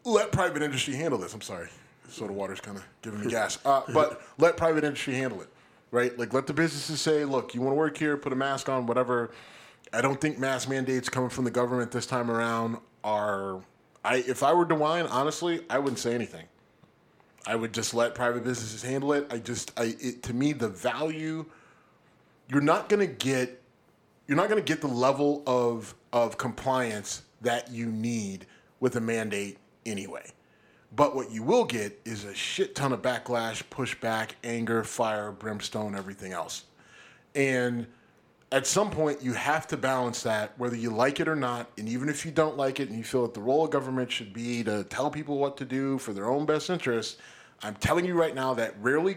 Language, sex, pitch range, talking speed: English, male, 115-145 Hz, 200 wpm